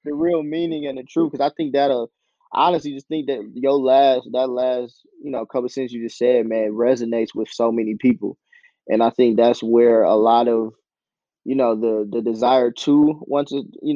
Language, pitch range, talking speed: English, 115-135 Hz, 215 wpm